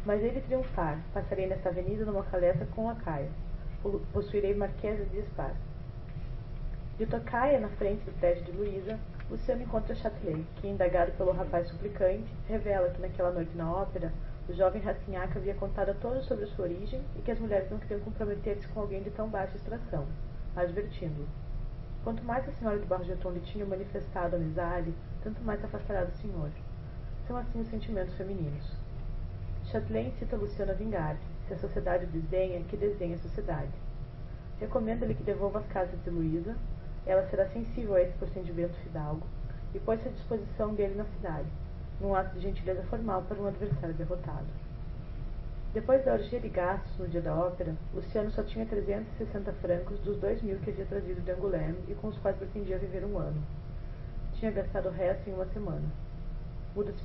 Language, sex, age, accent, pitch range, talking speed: Portuguese, female, 20-39, Brazilian, 150-200 Hz, 170 wpm